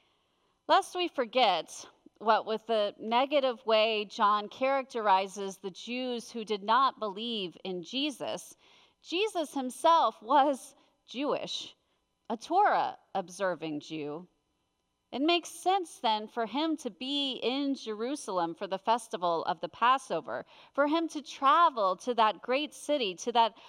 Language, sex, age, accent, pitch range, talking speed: English, female, 40-59, American, 215-295 Hz, 130 wpm